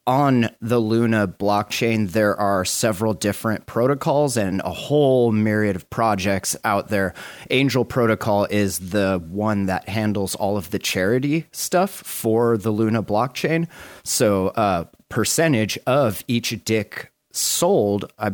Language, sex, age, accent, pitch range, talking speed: English, male, 30-49, American, 100-120 Hz, 135 wpm